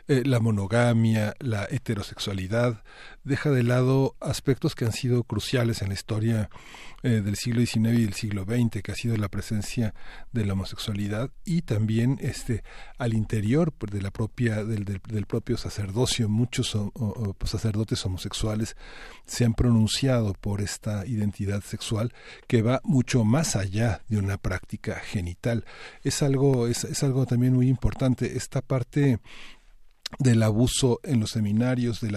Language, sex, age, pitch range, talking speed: Spanish, male, 40-59, 105-125 Hz, 155 wpm